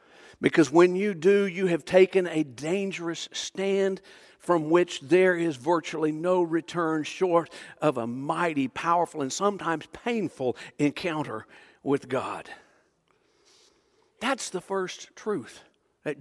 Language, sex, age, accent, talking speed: English, male, 60-79, American, 120 wpm